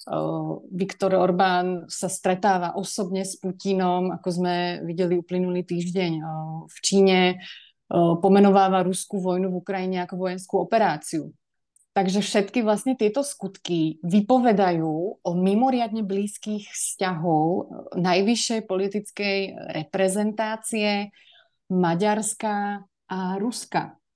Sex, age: female, 30-49